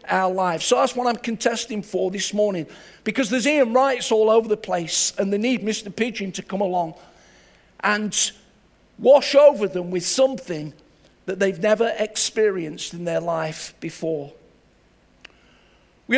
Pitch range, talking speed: 185-230 Hz, 150 wpm